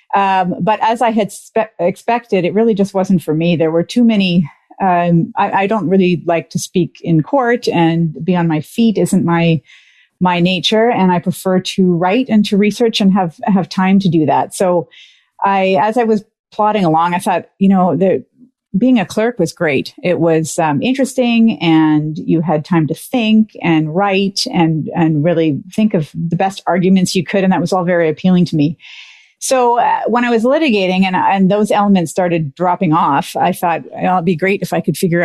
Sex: female